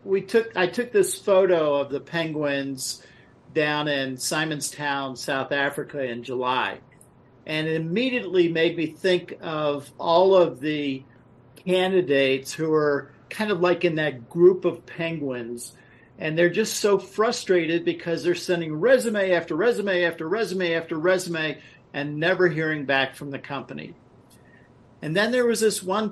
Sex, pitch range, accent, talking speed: male, 140-180 Hz, American, 155 wpm